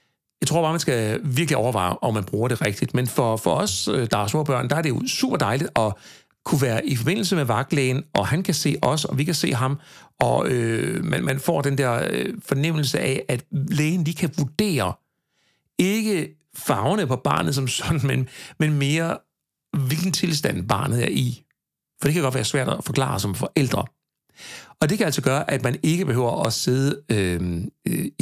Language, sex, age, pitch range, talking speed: Danish, male, 60-79, 115-155 Hz, 195 wpm